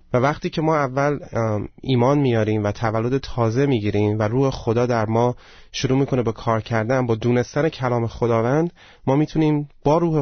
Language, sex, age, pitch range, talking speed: Persian, male, 30-49, 110-135 Hz, 170 wpm